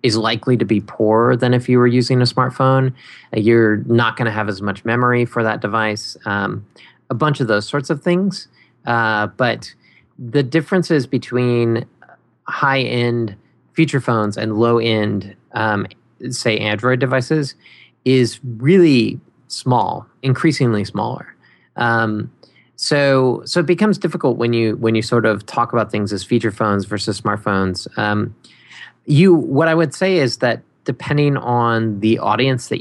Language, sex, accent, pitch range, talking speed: English, male, American, 110-135 Hz, 150 wpm